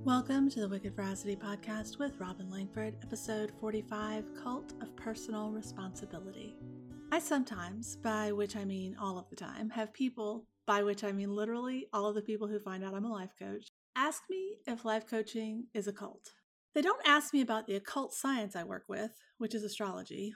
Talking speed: 190 wpm